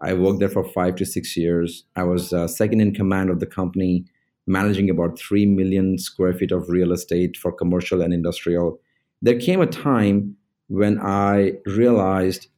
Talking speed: 175 wpm